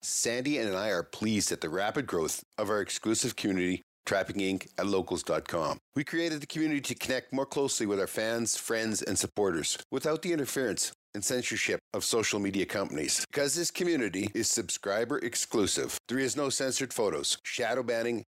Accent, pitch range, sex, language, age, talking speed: American, 105-135 Hz, male, English, 50-69, 175 wpm